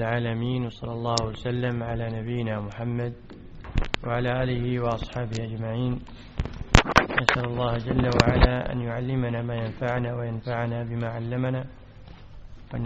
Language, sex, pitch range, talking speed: English, male, 110-130 Hz, 105 wpm